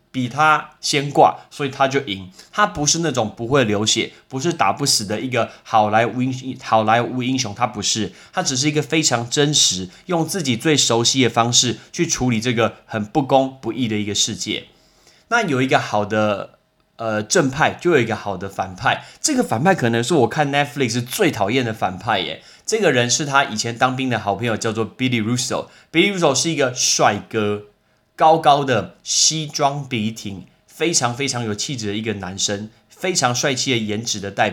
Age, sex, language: 20-39, male, Chinese